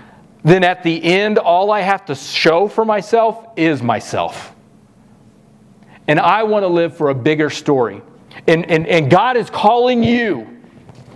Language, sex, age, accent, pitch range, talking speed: English, male, 40-59, American, 170-225 Hz, 155 wpm